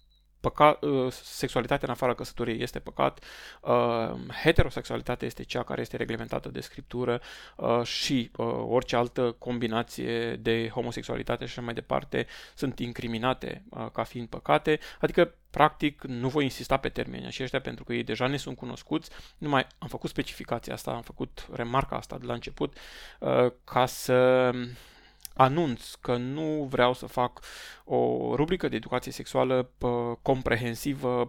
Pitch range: 120-135 Hz